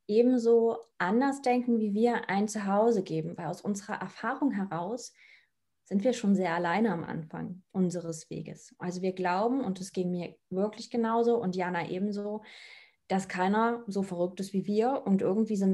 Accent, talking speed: German, 170 wpm